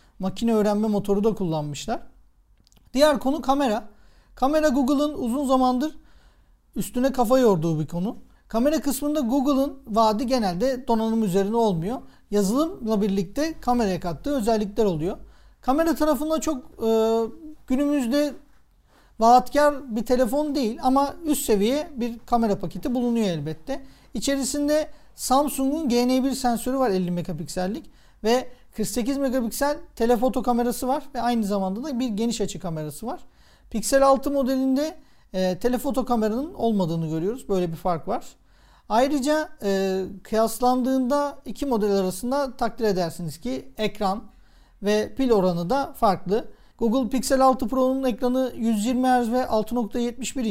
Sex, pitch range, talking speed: male, 210-270 Hz, 125 wpm